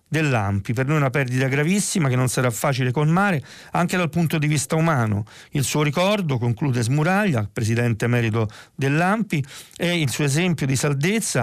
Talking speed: 165 wpm